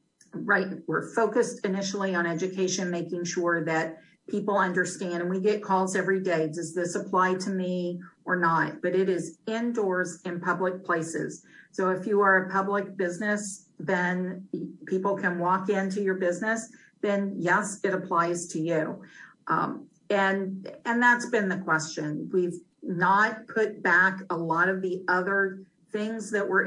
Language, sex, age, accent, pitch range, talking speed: English, female, 50-69, American, 180-205 Hz, 160 wpm